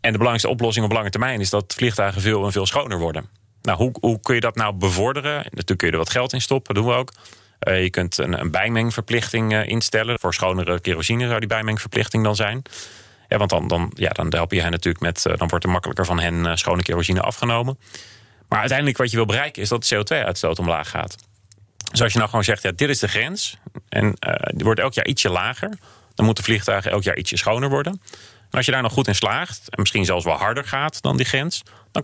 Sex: male